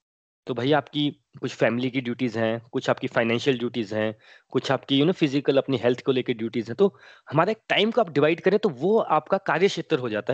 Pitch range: 125-185 Hz